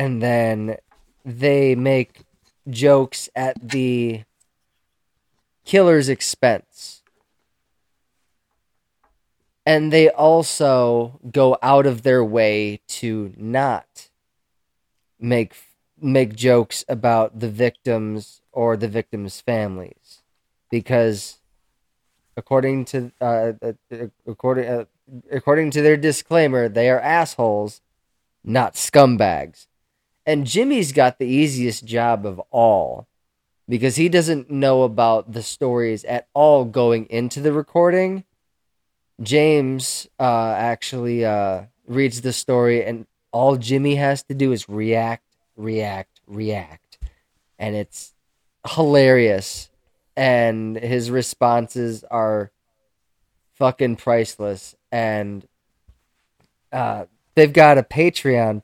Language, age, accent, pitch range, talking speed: English, 20-39, American, 110-135 Hz, 100 wpm